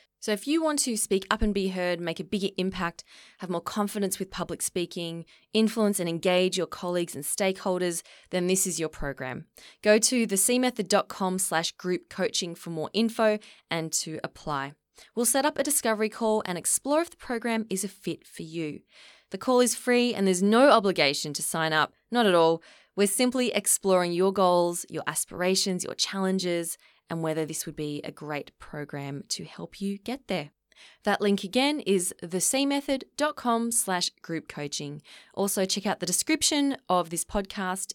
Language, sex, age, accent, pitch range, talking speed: English, female, 20-39, Australian, 165-215 Hz, 175 wpm